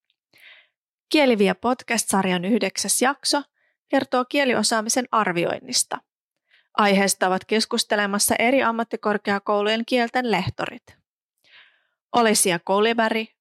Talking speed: 75 wpm